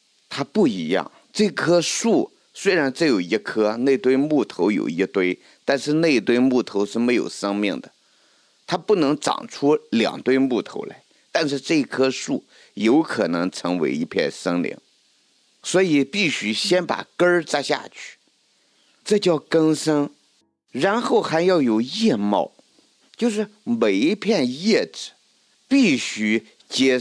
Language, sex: Chinese, male